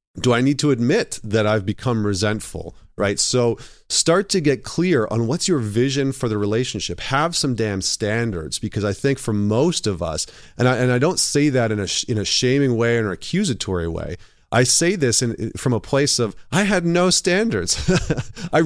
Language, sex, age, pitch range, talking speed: English, male, 40-59, 105-135 Hz, 205 wpm